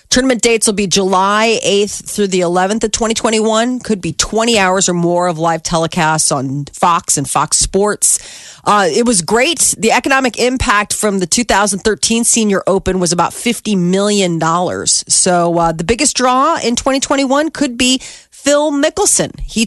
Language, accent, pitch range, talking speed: English, American, 170-215 Hz, 160 wpm